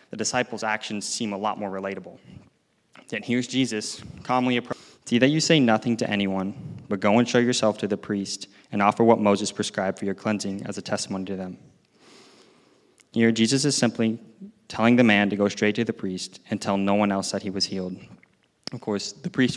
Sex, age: male, 20-39